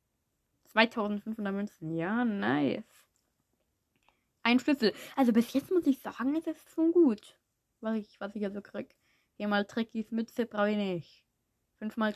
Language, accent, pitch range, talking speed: German, German, 195-250 Hz, 155 wpm